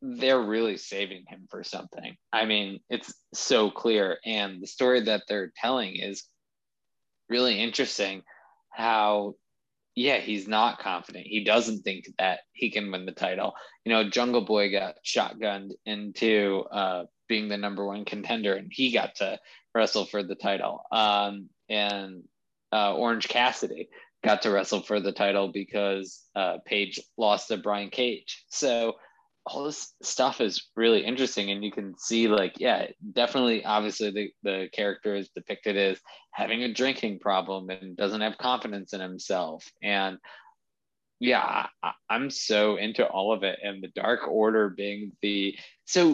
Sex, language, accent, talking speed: male, English, American, 155 wpm